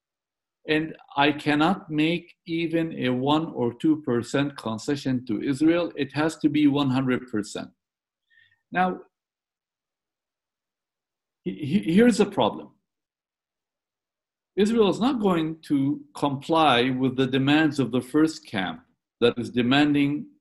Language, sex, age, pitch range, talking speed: English, male, 50-69, 130-165 Hz, 110 wpm